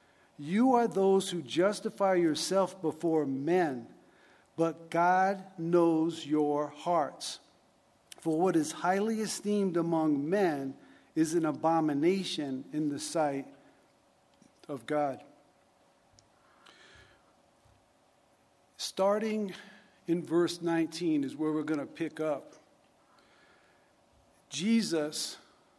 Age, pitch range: 50-69, 155-200 Hz